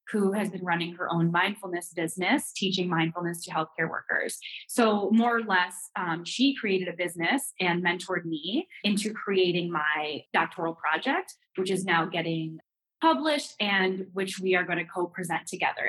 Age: 20-39